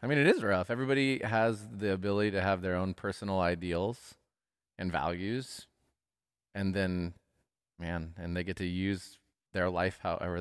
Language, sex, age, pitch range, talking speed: English, male, 30-49, 90-110 Hz, 160 wpm